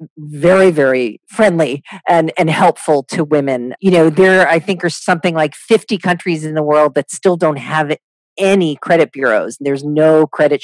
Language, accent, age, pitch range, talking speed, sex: English, American, 40-59, 140-170 Hz, 175 wpm, female